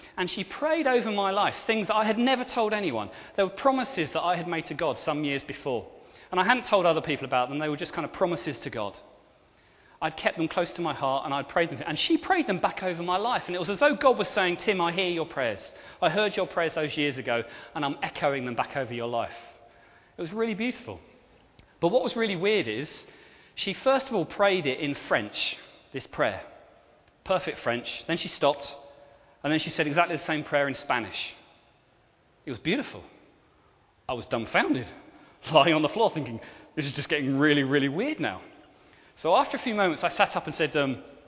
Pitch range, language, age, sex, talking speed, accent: 145-210 Hz, English, 30-49, male, 220 wpm, British